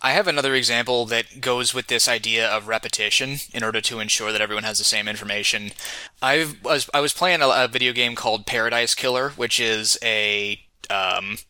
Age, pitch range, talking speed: 20-39, 110-130 Hz, 200 wpm